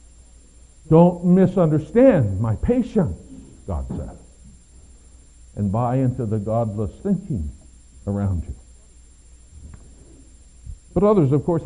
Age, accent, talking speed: 60-79, American, 95 wpm